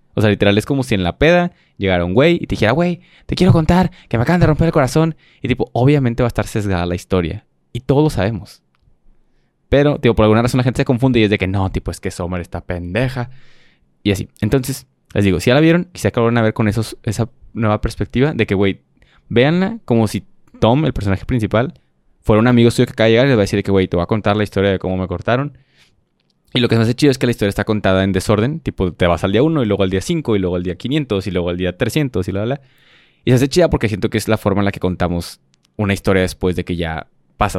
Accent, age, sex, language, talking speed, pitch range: Mexican, 20-39, male, Spanish, 275 wpm, 95-130 Hz